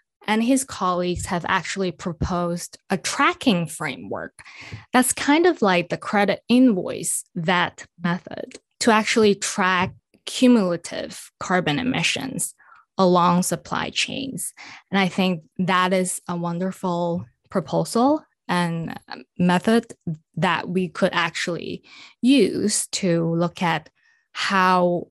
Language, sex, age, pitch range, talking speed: English, female, 10-29, 175-205 Hz, 110 wpm